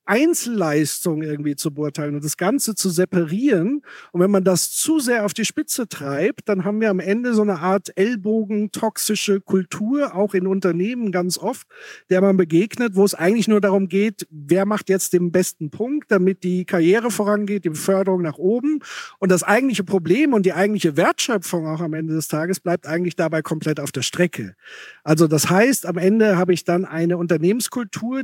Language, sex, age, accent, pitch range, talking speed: German, male, 50-69, German, 165-205 Hz, 185 wpm